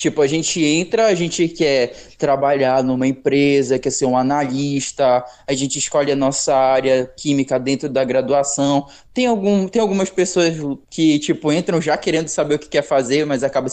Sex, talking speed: male, 180 wpm